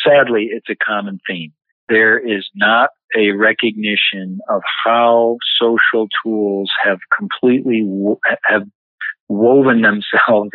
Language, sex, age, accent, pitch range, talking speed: English, male, 40-59, American, 95-115 Hz, 110 wpm